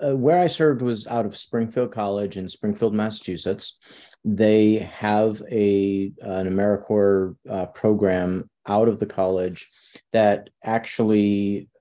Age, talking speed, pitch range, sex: 30-49, 130 wpm, 95-110 Hz, male